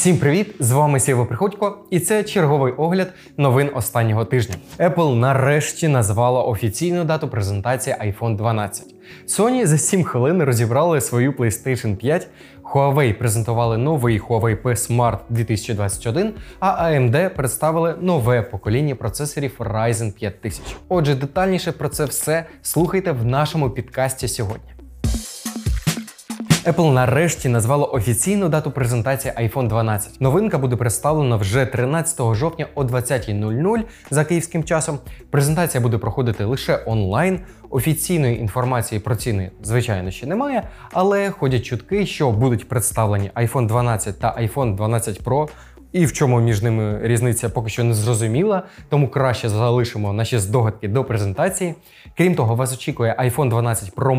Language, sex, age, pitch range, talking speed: Ukrainian, male, 20-39, 115-160 Hz, 135 wpm